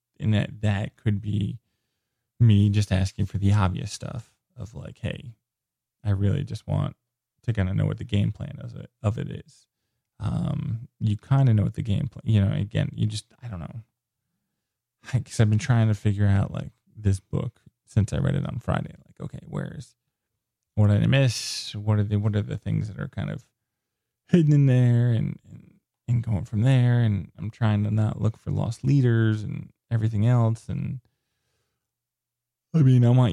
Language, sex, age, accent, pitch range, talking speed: English, male, 20-39, American, 105-135 Hz, 195 wpm